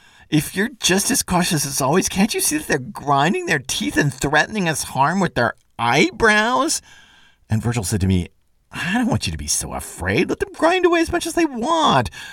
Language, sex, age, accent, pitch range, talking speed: English, male, 50-69, American, 105-145 Hz, 215 wpm